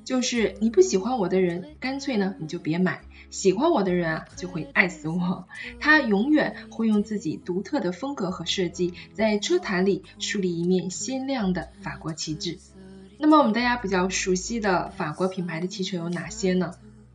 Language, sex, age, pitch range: Chinese, female, 20-39, 170-215 Hz